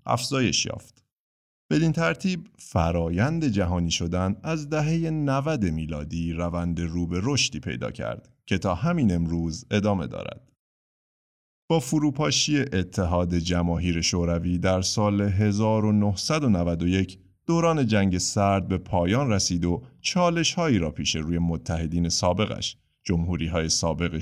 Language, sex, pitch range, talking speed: Persian, male, 90-120 Hz, 120 wpm